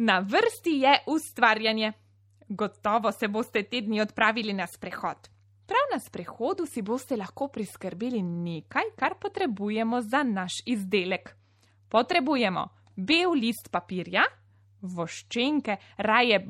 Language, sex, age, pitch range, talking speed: Italian, female, 20-39, 175-240 Hz, 110 wpm